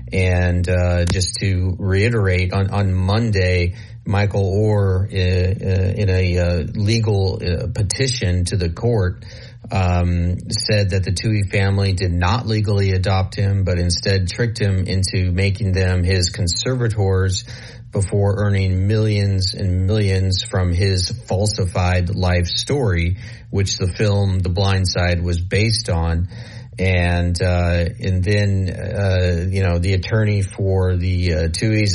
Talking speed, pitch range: 135 wpm, 95-110 Hz